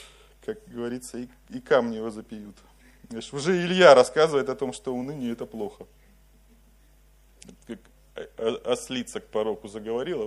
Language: Russian